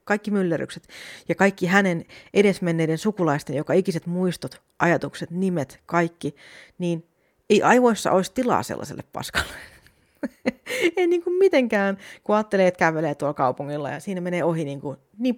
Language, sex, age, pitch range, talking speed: Finnish, female, 30-49, 155-210 Hz, 140 wpm